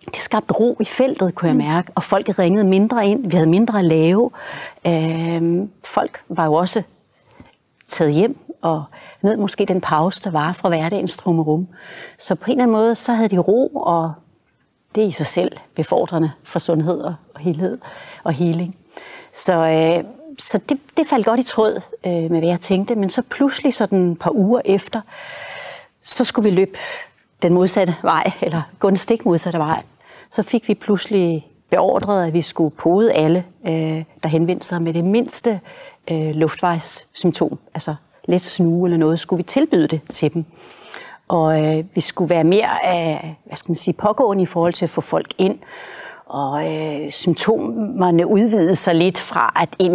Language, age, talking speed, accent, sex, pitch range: Danish, 40-59, 180 wpm, native, female, 165-205 Hz